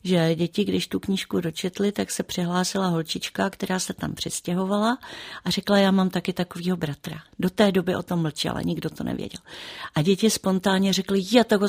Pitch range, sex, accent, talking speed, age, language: 170-195 Hz, female, native, 185 wpm, 40-59, Czech